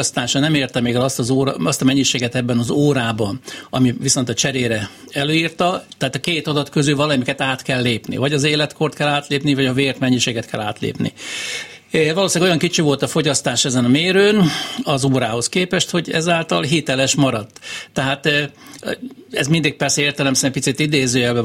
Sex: male